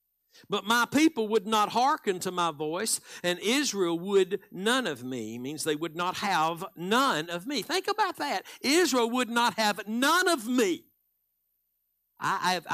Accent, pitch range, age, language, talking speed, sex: American, 130-220 Hz, 60-79, English, 160 wpm, male